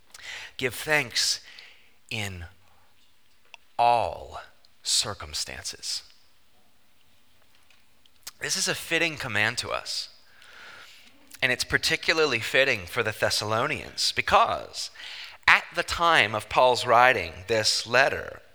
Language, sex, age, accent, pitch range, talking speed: English, male, 30-49, American, 100-160 Hz, 90 wpm